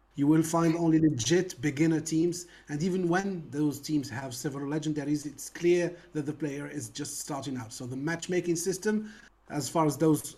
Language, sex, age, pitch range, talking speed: English, male, 30-49, 145-175 Hz, 185 wpm